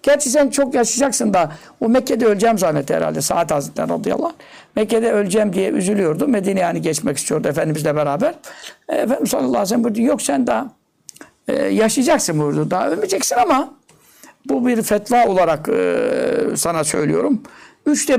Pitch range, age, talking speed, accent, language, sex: 205-280 Hz, 60-79, 145 wpm, native, Turkish, male